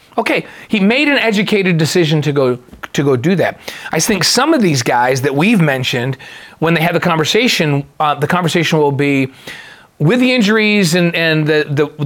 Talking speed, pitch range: 190 wpm, 140-180 Hz